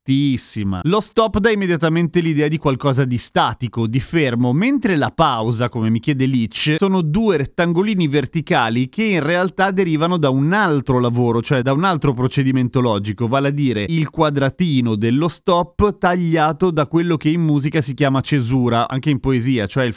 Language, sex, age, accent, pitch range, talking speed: Italian, male, 30-49, native, 120-160 Hz, 170 wpm